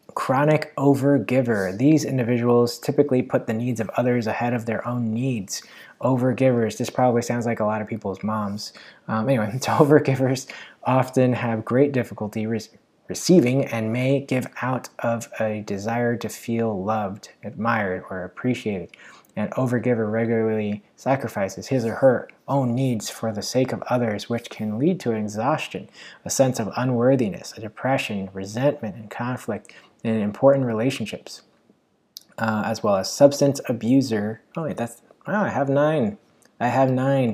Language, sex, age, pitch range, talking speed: English, male, 20-39, 110-135 Hz, 150 wpm